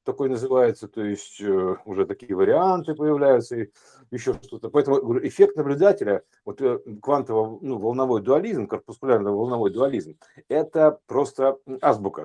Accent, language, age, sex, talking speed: native, Russian, 50-69, male, 115 wpm